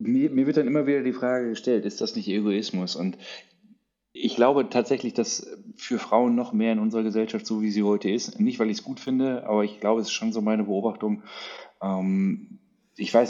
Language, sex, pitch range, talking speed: German, male, 95-130 Hz, 215 wpm